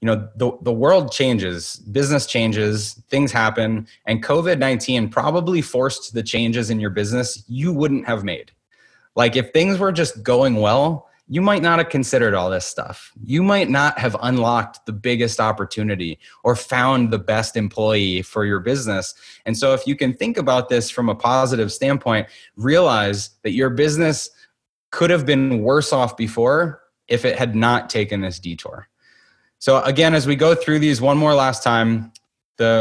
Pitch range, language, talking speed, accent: 115-150 Hz, English, 175 wpm, American